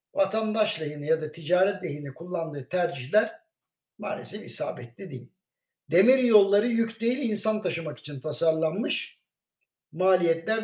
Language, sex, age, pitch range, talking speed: Turkish, male, 60-79, 165-225 Hz, 115 wpm